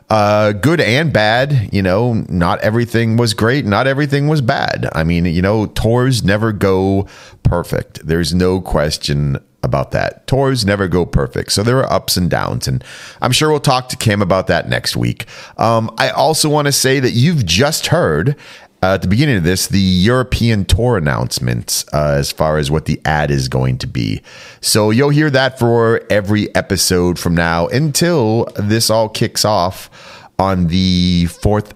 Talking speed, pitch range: 180 wpm, 90-125 Hz